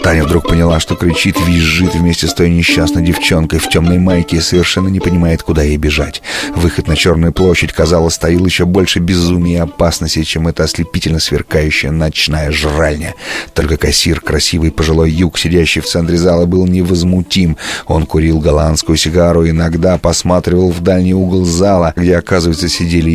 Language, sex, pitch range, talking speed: Russian, male, 80-90 Hz, 165 wpm